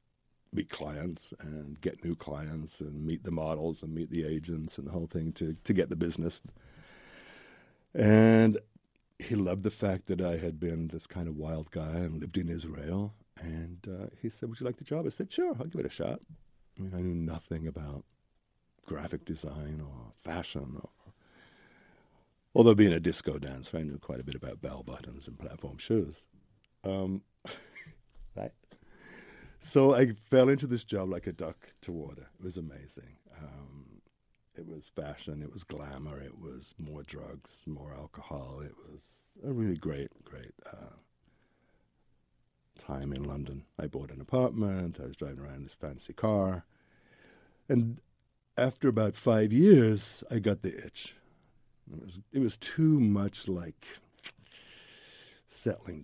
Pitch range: 75-105 Hz